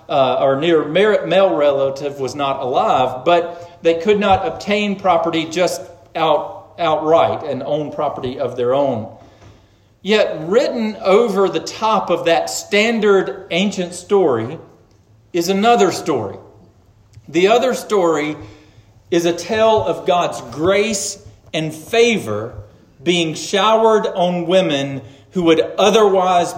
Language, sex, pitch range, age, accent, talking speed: English, male, 130-190 Hz, 40-59, American, 125 wpm